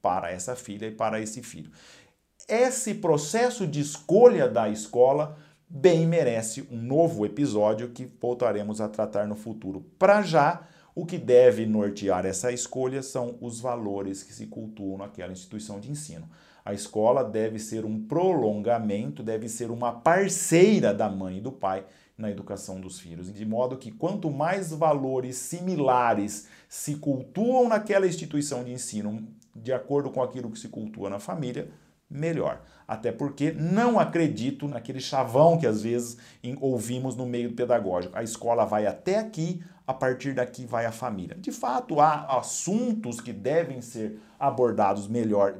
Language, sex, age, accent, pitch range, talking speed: Portuguese, male, 50-69, Brazilian, 105-150 Hz, 155 wpm